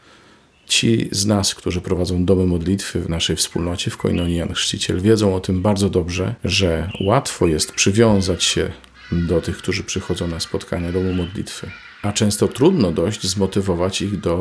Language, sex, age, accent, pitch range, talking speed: Polish, male, 40-59, native, 90-105 Hz, 160 wpm